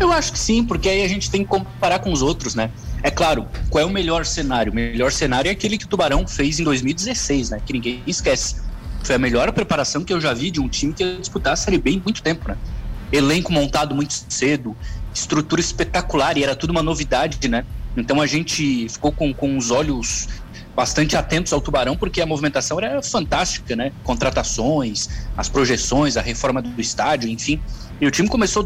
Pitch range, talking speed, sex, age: 125-165 Hz, 205 wpm, male, 20-39